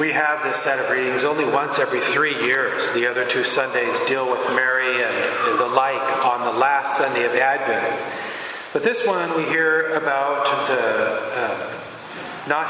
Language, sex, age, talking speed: English, male, 40-59, 165 wpm